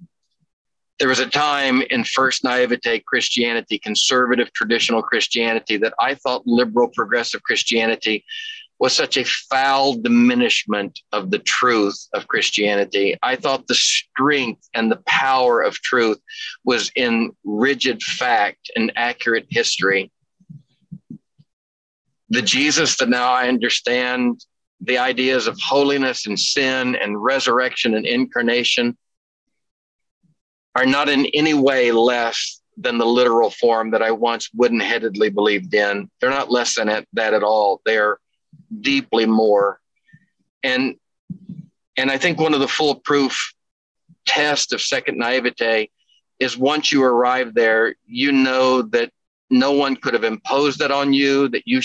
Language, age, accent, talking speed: English, 50-69, American, 135 wpm